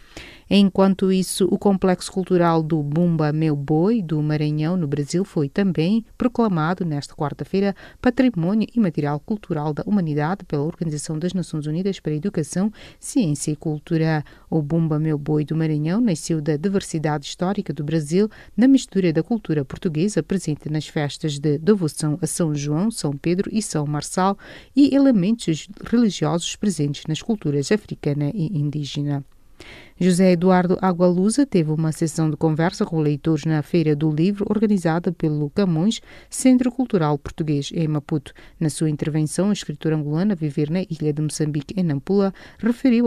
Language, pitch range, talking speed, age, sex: English, 150-200 Hz, 150 wpm, 30-49, female